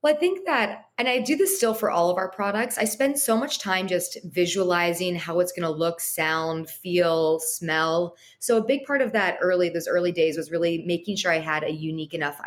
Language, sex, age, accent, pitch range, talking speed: English, female, 20-39, American, 160-200 Hz, 230 wpm